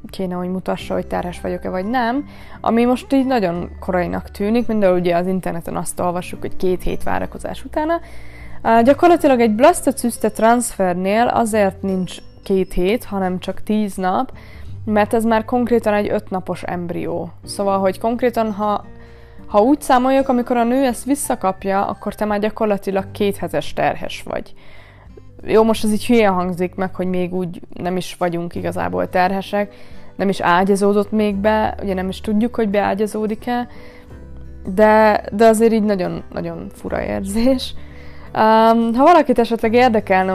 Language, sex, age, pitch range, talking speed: Hungarian, female, 20-39, 180-225 Hz, 150 wpm